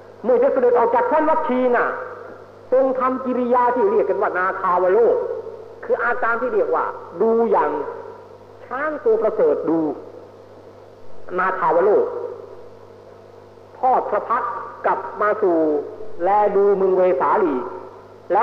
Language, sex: Thai, male